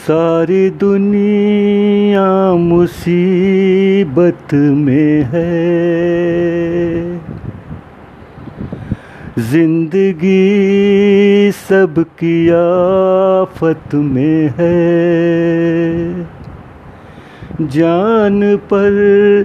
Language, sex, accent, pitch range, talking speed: Hindi, male, native, 150-190 Hz, 35 wpm